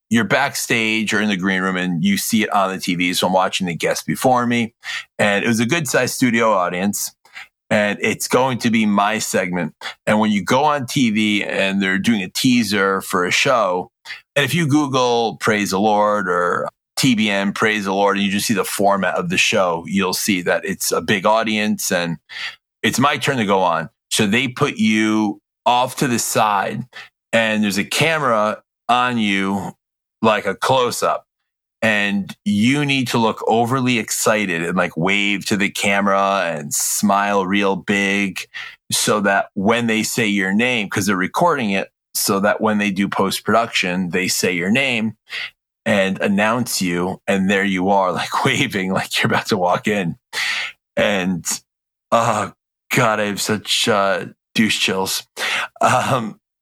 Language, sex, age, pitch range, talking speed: English, male, 30-49, 100-115 Hz, 175 wpm